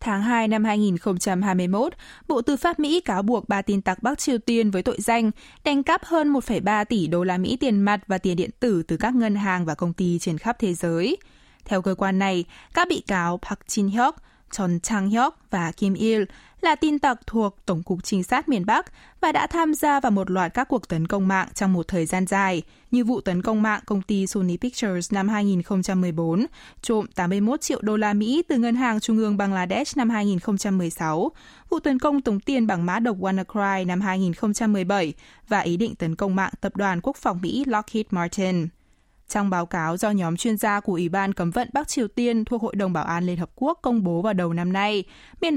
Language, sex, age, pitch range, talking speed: Vietnamese, female, 20-39, 185-240 Hz, 215 wpm